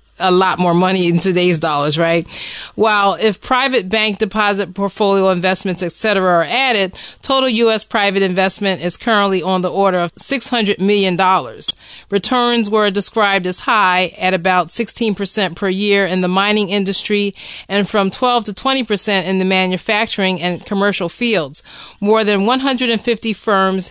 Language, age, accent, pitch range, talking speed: English, 30-49, American, 185-220 Hz, 150 wpm